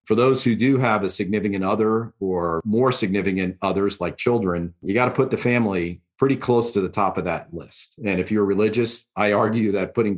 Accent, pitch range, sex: American, 95-110 Hz, male